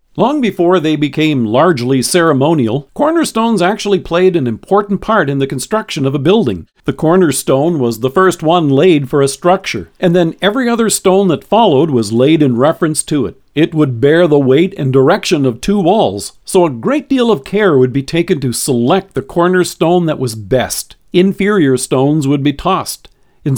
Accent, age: American, 50-69